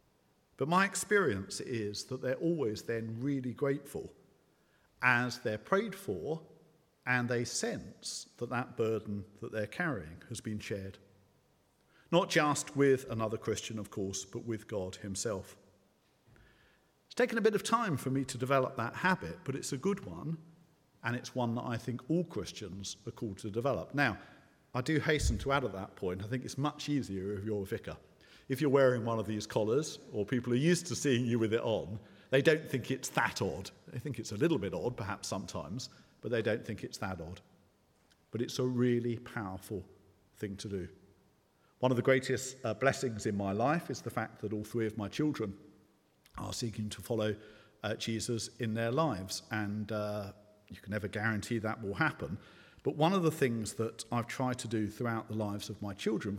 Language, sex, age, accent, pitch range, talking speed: English, male, 50-69, British, 105-135 Hz, 195 wpm